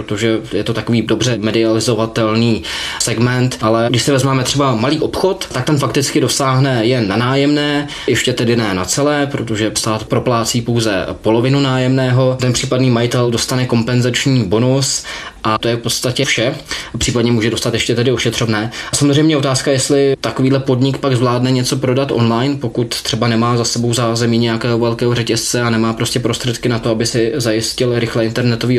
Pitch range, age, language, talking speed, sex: 115-130 Hz, 20-39, Czech, 170 wpm, male